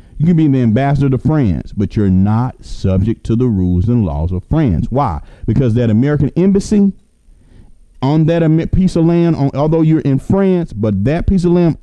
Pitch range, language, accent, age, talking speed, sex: 100-160 Hz, English, American, 40-59, 195 wpm, male